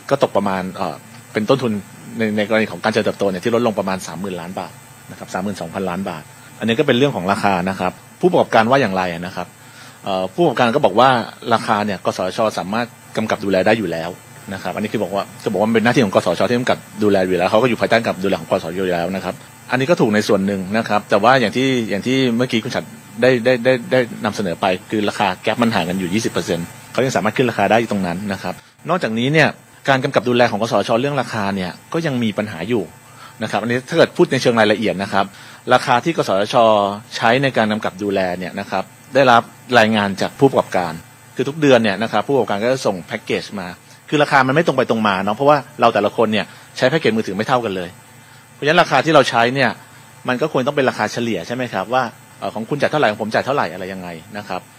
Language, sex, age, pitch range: Thai, male, 30-49, 100-125 Hz